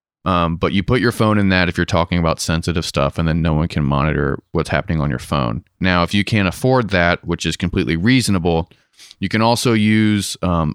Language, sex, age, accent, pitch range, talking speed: English, male, 30-49, American, 85-105 Hz, 225 wpm